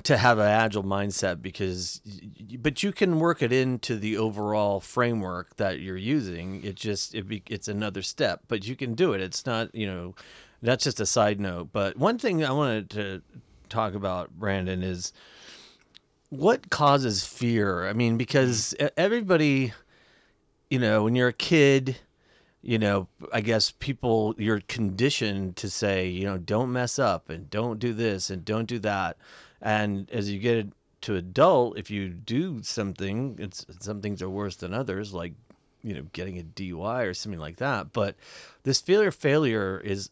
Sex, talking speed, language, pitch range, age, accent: male, 170 wpm, English, 100-125 Hz, 30-49, American